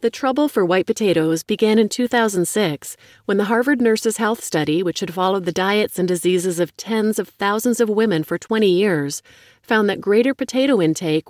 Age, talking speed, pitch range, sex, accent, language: 30-49, 185 wpm, 165-225 Hz, female, American, English